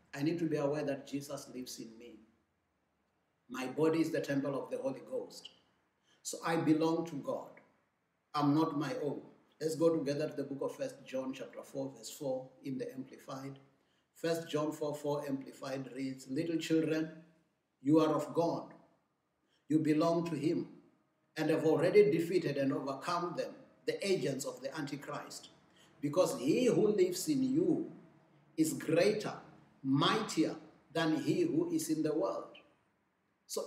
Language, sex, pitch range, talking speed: English, male, 140-195 Hz, 160 wpm